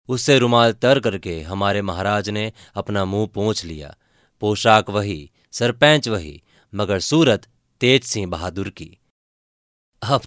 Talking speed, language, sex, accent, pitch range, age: 130 wpm, Hindi, male, native, 100-120 Hz, 30-49